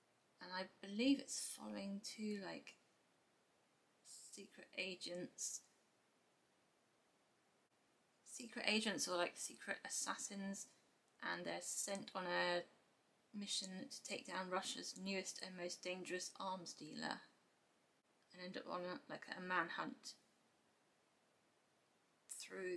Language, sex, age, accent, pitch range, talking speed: English, female, 20-39, British, 180-215 Hz, 105 wpm